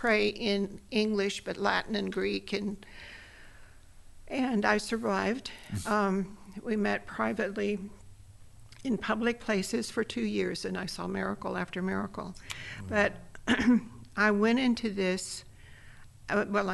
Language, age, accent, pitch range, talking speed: English, 60-79, American, 190-220 Hz, 120 wpm